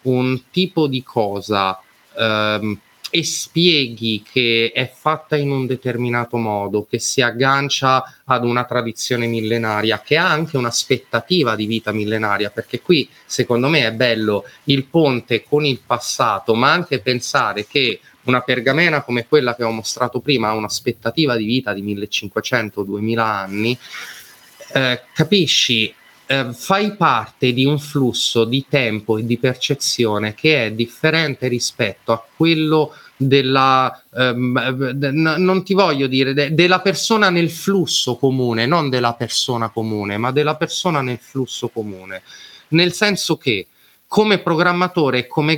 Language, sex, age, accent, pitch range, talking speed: Italian, male, 30-49, native, 115-155 Hz, 140 wpm